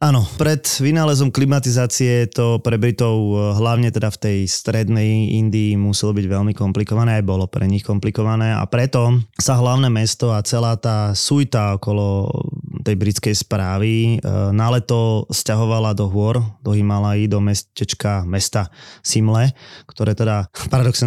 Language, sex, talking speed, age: Slovak, male, 135 wpm, 20-39